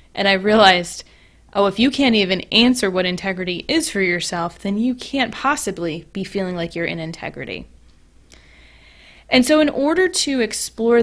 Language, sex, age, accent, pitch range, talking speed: English, female, 20-39, American, 170-220 Hz, 165 wpm